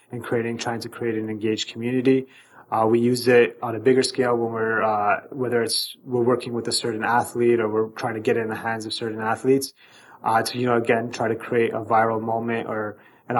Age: 20-39